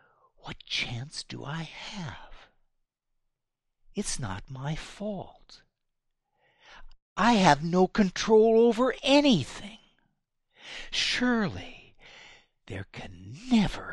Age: 60-79